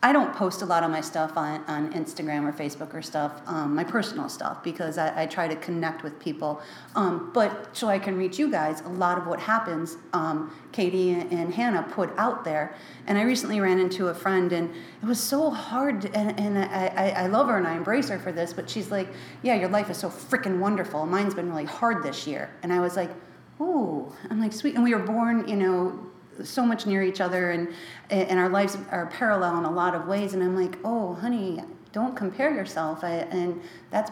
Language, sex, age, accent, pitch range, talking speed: English, female, 40-59, American, 170-215 Hz, 225 wpm